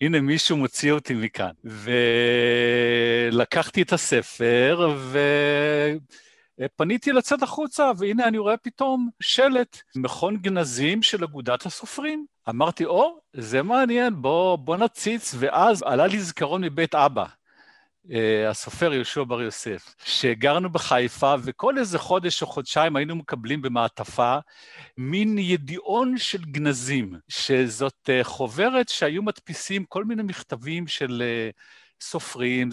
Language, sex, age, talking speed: Hebrew, male, 50-69, 120 wpm